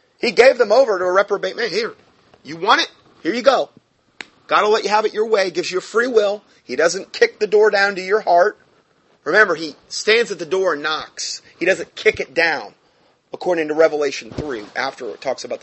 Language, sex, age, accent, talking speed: English, male, 30-49, American, 225 wpm